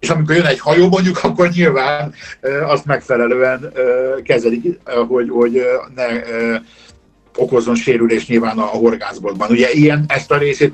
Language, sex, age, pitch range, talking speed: Hungarian, male, 50-69, 115-140 Hz, 135 wpm